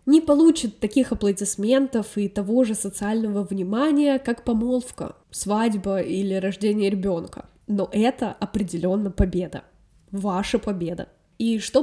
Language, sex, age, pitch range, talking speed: Russian, female, 10-29, 195-255 Hz, 115 wpm